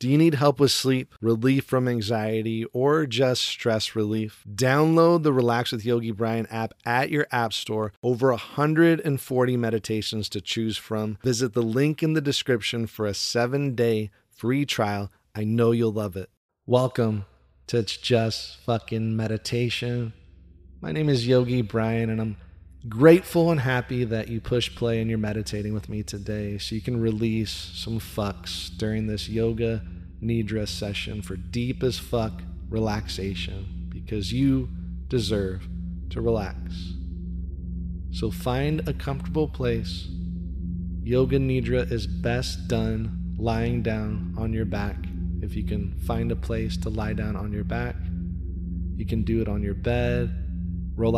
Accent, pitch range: American, 90-120 Hz